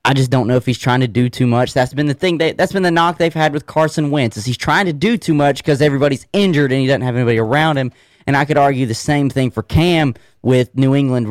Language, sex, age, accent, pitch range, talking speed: English, male, 30-49, American, 125-165 Hz, 280 wpm